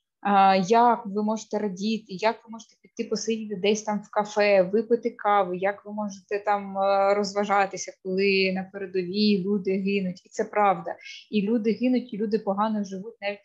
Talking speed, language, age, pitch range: 160 wpm, Ukrainian, 20-39, 195-225 Hz